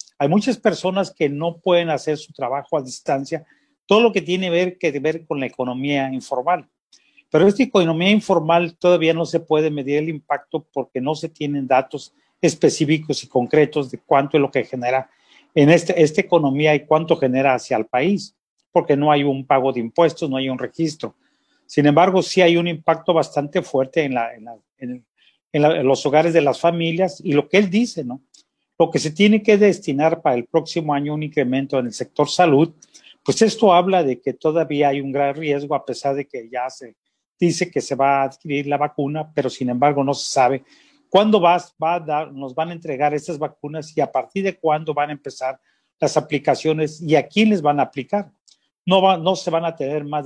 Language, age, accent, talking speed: Spanish, 40-59, Mexican, 215 wpm